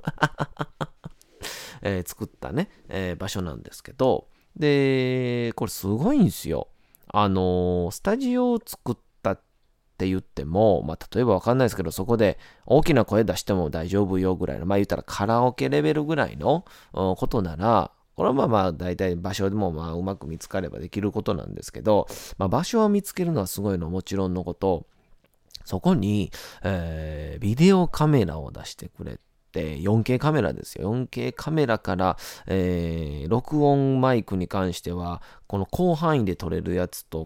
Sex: male